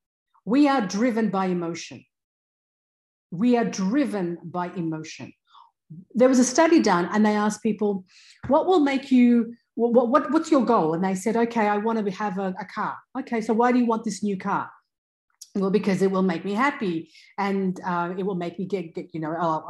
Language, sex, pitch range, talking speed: English, female, 190-255 Hz, 200 wpm